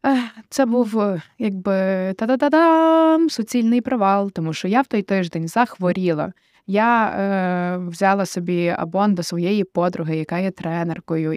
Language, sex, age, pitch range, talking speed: Ukrainian, female, 20-39, 180-215 Hz, 130 wpm